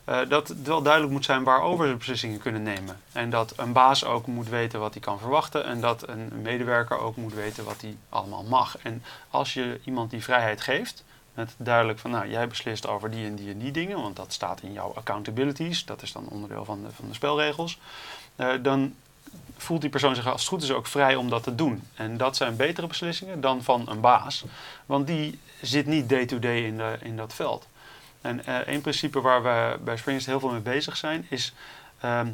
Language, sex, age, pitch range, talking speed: Dutch, male, 30-49, 115-140 Hz, 220 wpm